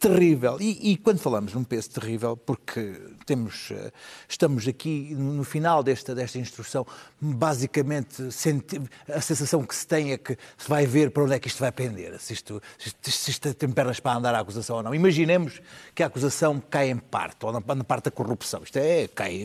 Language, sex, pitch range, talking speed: Portuguese, male, 125-165 Hz, 190 wpm